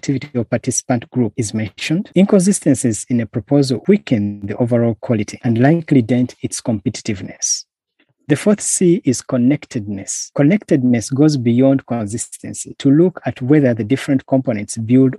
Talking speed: 140 wpm